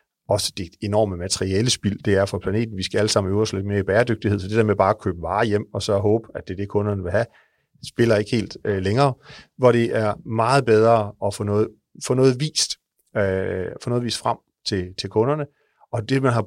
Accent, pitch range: native, 100-125 Hz